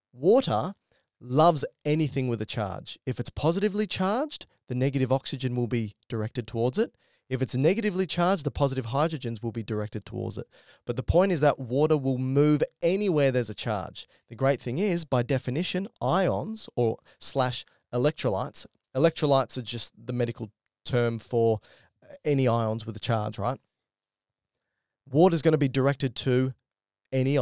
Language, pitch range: English, 115-150 Hz